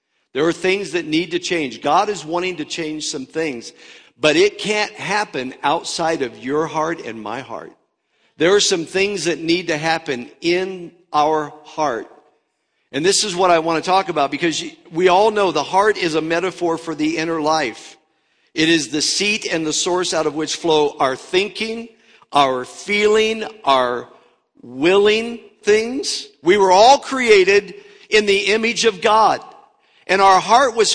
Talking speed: 175 wpm